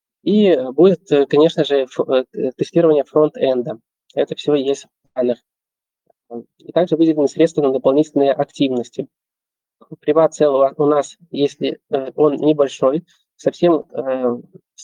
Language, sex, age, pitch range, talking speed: Russian, male, 20-39, 140-160 Hz, 105 wpm